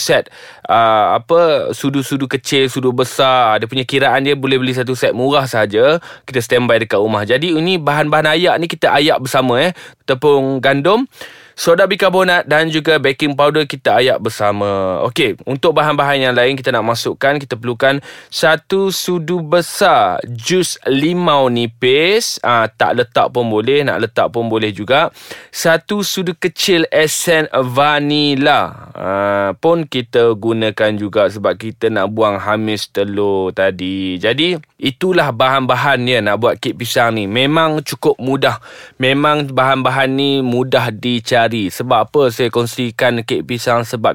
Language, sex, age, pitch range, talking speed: Malay, male, 20-39, 110-145 Hz, 150 wpm